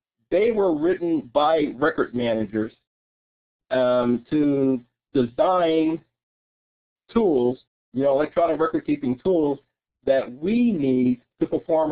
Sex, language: male, English